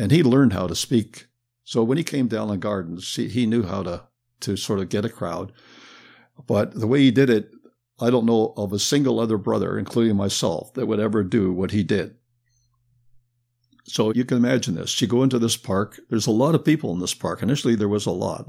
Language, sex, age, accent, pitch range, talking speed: English, male, 60-79, American, 105-125 Hz, 225 wpm